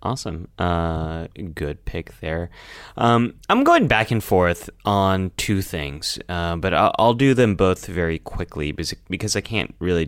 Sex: male